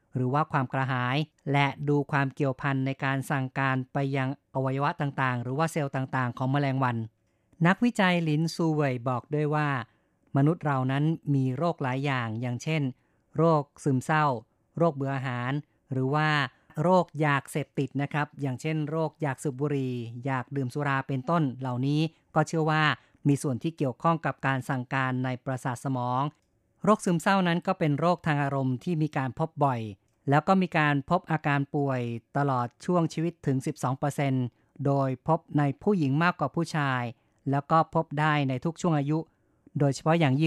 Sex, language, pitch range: female, Thai, 135-155 Hz